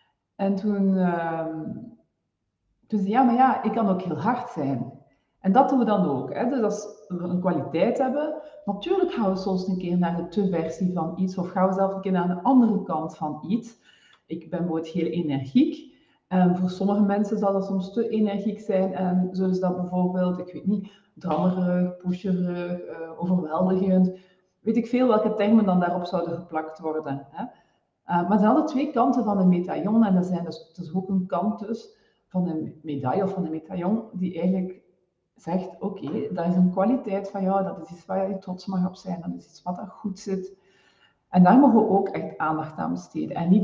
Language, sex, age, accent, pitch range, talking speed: Dutch, female, 40-59, Dutch, 180-215 Hz, 210 wpm